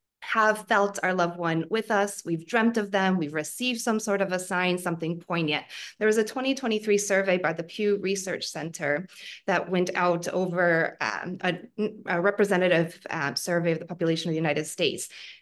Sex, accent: female, American